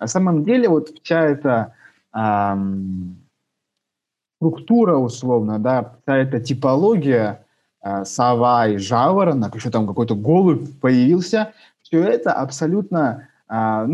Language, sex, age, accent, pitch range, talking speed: Russian, male, 20-39, native, 120-165 Hz, 110 wpm